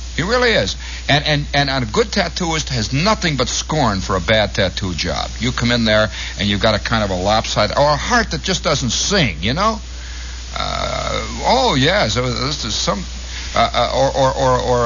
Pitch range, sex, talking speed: 80-130 Hz, male, 200 wpm